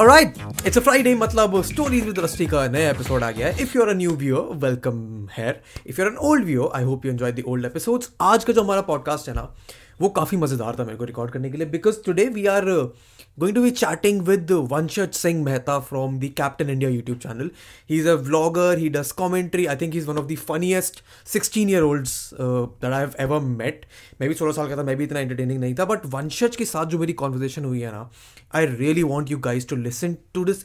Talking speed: 190 wpm